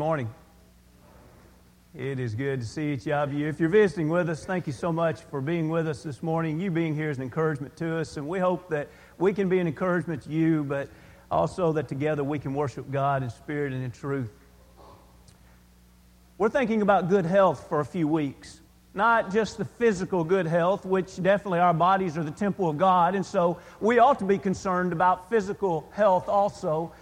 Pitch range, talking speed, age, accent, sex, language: 160-220 Hz, 200 wpm, 40-59, American, male, English